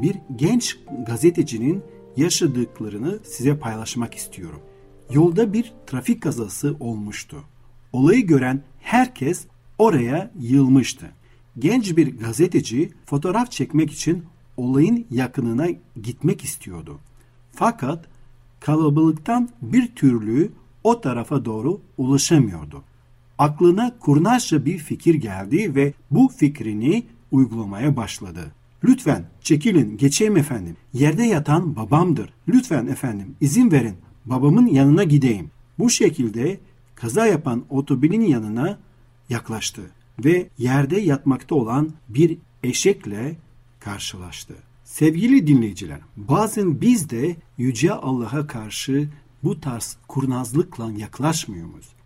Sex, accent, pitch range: male, native, 120-160 Hz